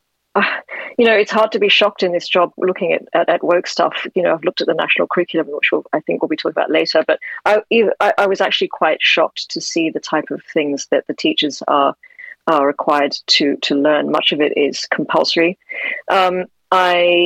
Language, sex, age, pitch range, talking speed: English, female, 40-59, 155-200 Hz, 225 wpm